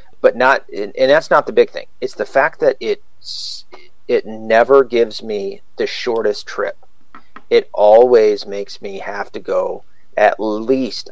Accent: American